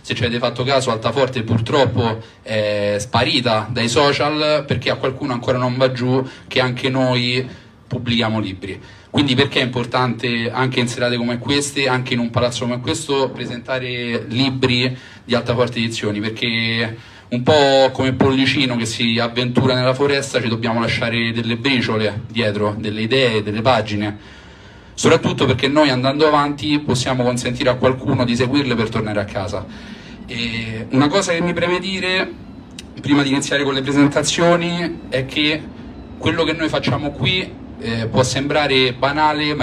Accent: native